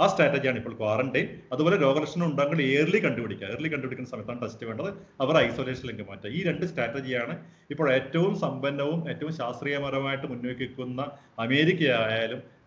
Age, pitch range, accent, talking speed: 30-49, 115-155 Hz, native, 130 wpm